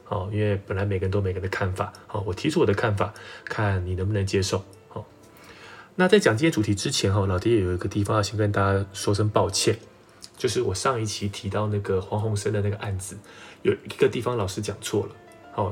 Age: 20-39